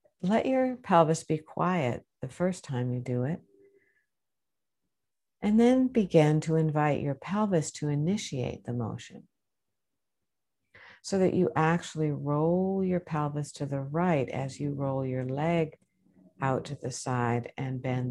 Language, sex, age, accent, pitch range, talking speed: English, female, 60-79, American, 130-170 Hz, 145 wpm